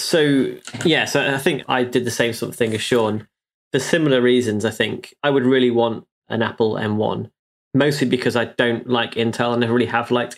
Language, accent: English, British